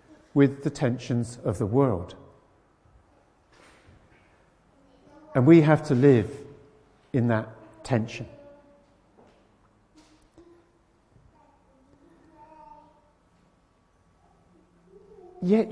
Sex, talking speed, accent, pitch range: male, 55 wpm, British, 115-170 Hz